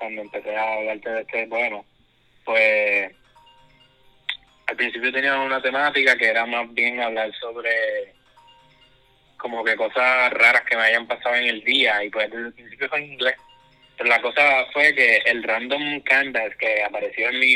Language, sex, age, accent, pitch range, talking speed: Spanish, male, 20-39, Spanish, 105-125 Hz, 170 wpm